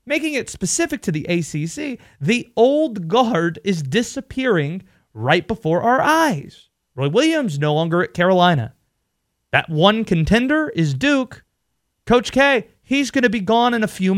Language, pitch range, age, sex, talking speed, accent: English, 160-250 Hz, 30-49, male, 150 wpm, American